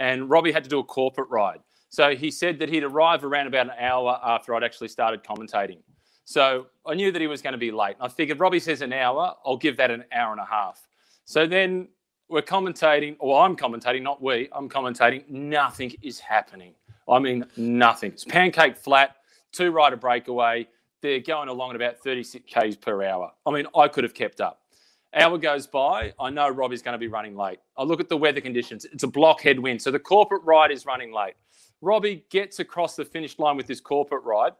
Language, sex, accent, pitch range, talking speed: English, male, Australian, 125-170 Hz, 215 wpm